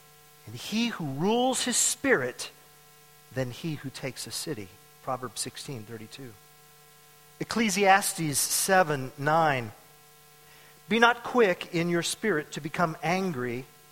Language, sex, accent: English, male, American